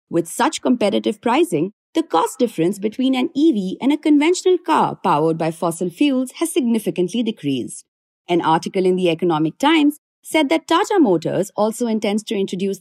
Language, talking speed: English, 165 wpm